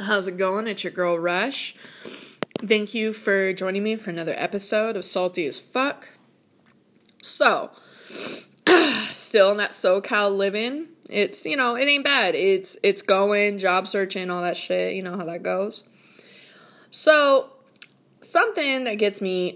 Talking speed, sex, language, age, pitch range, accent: 150 wpm, female, English, 20-39, 195-260 Hz, American